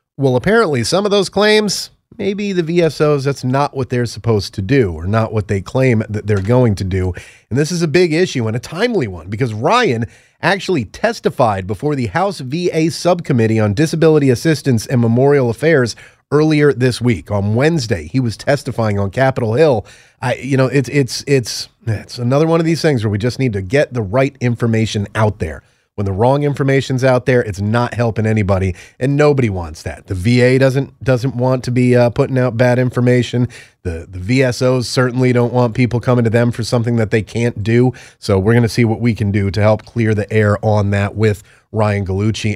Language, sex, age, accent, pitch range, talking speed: English, male, 30-49, American, 110-140 Hz, 205 wpm